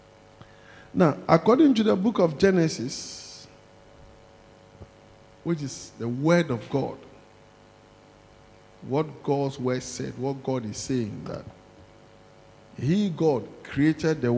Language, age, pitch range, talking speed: English, 50-69, 110-140 Hz, 110 wpm